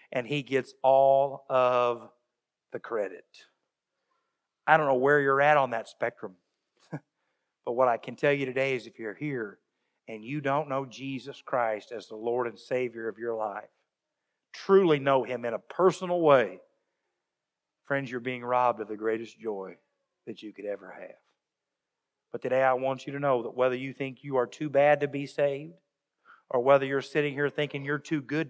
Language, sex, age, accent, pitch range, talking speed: English, male, 50-69, American, 125-150 Hz, 185 wpm